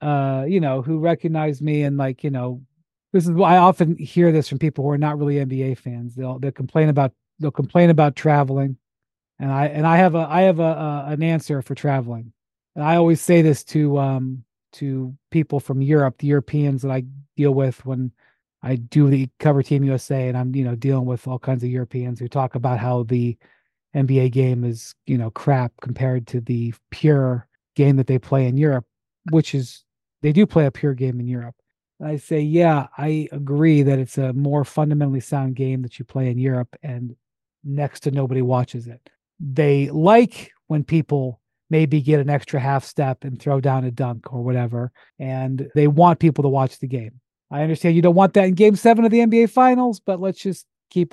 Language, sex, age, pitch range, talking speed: English, male, 40-59, 130-155 Hz, 210 wpm